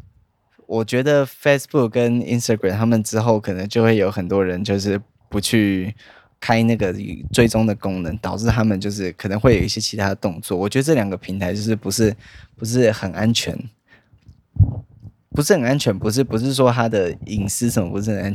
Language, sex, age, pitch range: Chinese, male, 20-39, 100-115 Hz